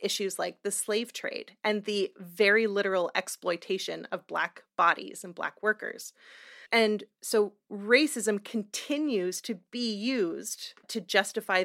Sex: female